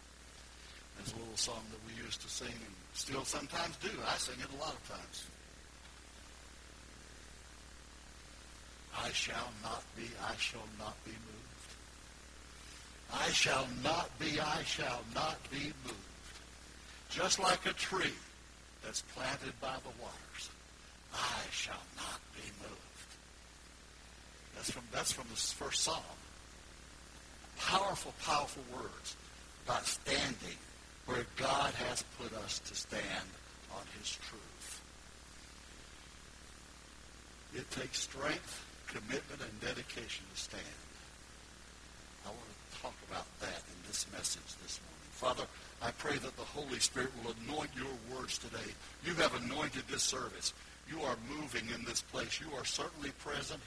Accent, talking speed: American, 135 wpm